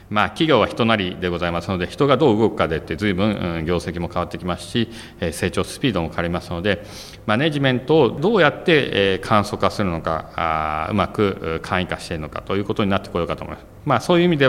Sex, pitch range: male, 85-110 Hz